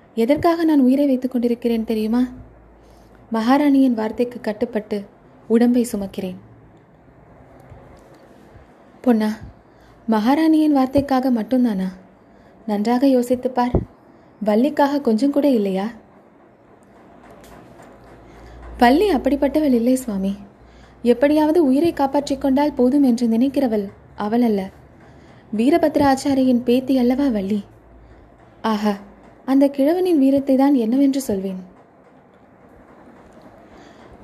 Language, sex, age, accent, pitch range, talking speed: Tamil, female, 20-39, native, 225-280 Hz, 75 wpm